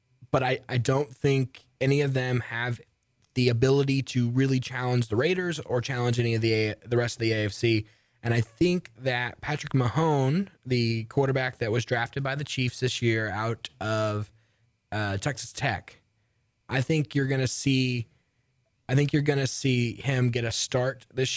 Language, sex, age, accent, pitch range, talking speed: English, male, 20-39, American, 115-130 Hz, 175 wpm